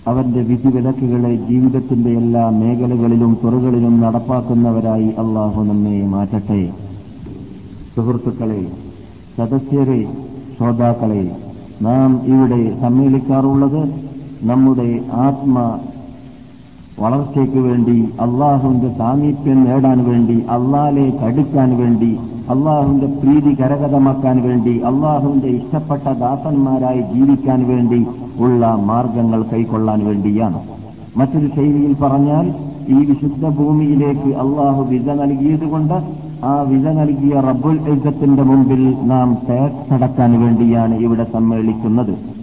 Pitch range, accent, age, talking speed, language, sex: 115-140 Hz, native, 50-69, 80 wpm, Malayalam, male